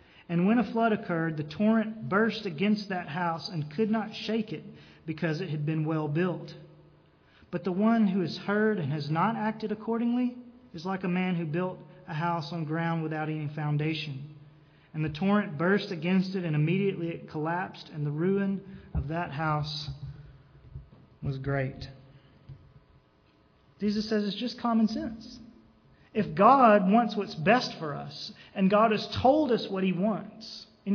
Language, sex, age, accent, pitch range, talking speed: English, male, 40-59, American, 150-215 Hz, 165 wpm